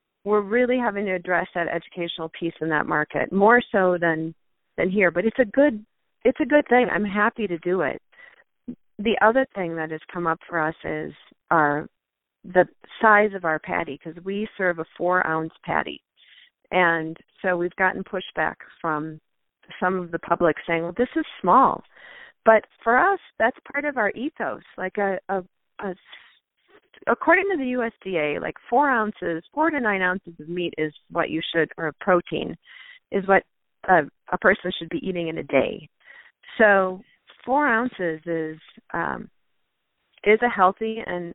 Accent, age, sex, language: American, 40-59, female, English